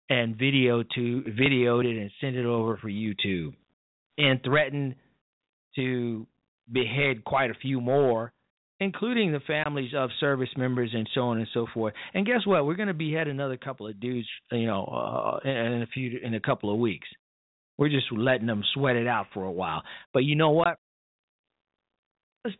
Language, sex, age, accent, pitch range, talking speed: English, male, 40-59, American, 125-195 Hz, 180 wpm